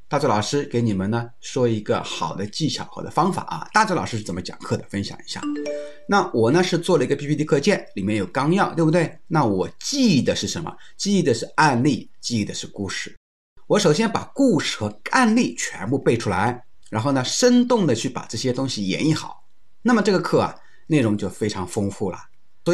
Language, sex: Chinese, male